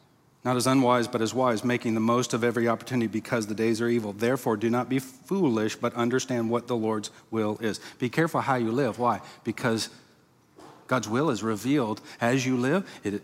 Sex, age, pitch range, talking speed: male, 40-59, 115-140 Hz, 200 wpm